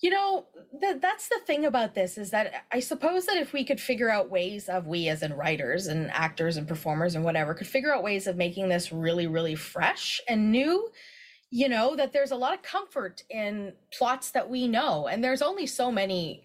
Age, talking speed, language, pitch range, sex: 20-39, 215 wpm, English, 175-260 Hz, female